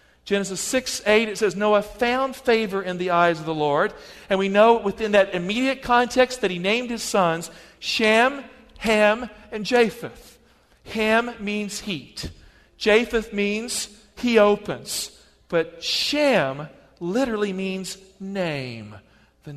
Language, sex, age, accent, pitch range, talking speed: English, male, 50-69, American, 165-220 Hz, 130 wpm